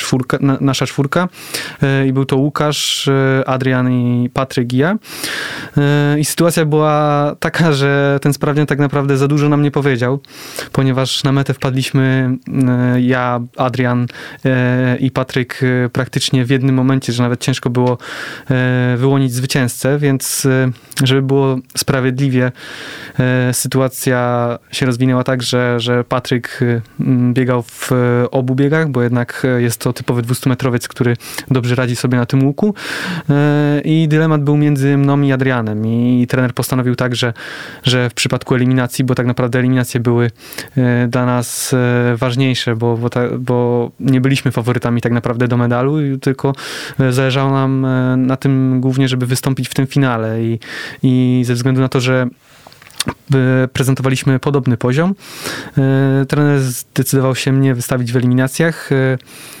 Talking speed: 135 wpm